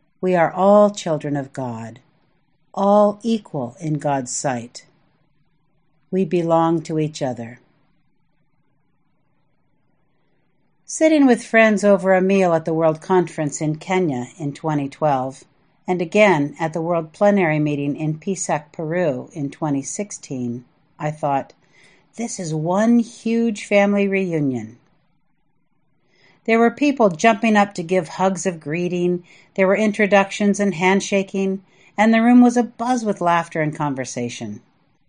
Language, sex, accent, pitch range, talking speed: English, female, American, 150-200 Hz, 130 wpm